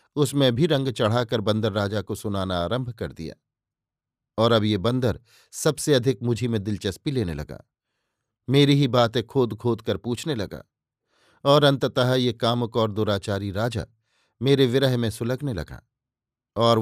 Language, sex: Hindi, male